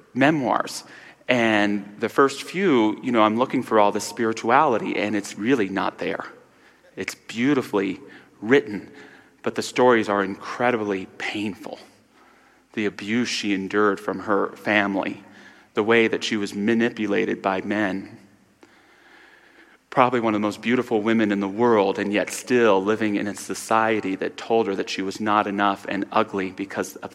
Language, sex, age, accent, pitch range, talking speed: English, male, 30-49, American, 105-120 Hz, 155 wpm